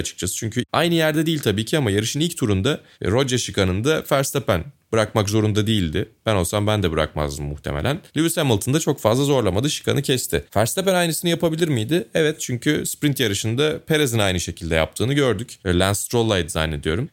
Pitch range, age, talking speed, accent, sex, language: 90-130 Hz, 30-49, 170 wpm, native, male, Turkish